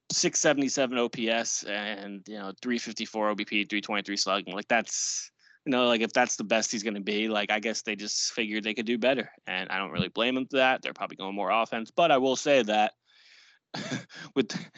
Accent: American